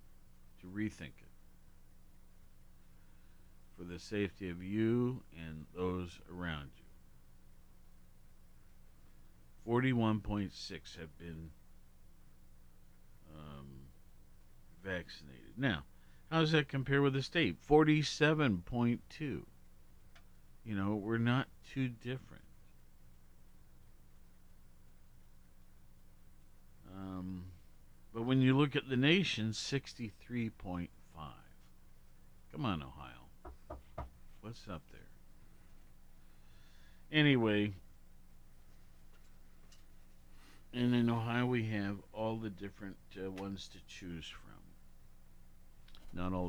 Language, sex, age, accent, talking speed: English, male, 50-69, American, 80 wpm